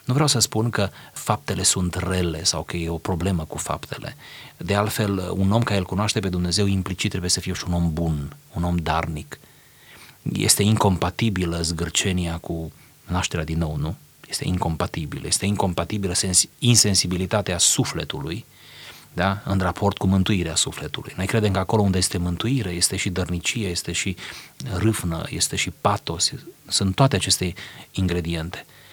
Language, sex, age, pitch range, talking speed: Romanian, male, 30-49, 90-110 Hz, 155 wpm